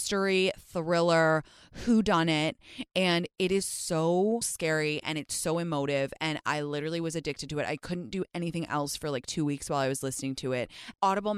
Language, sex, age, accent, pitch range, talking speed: English, female, 20-39, American, 145-195 Hz, 195 wpm